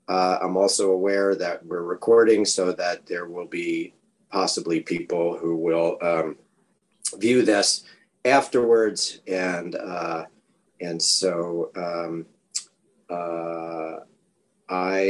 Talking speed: 105 wpm